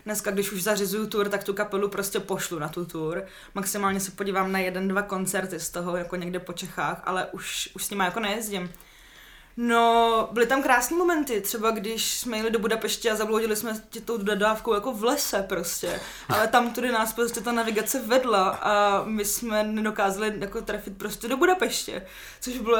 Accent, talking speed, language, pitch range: native, 190 wpm, Czech, 205-240 Hz